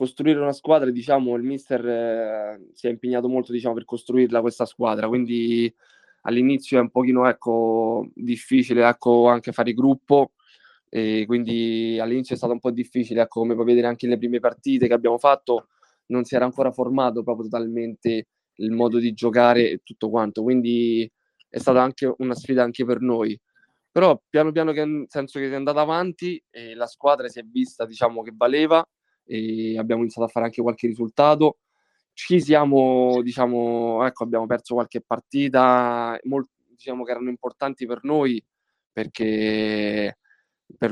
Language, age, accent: Italian, 20-39, native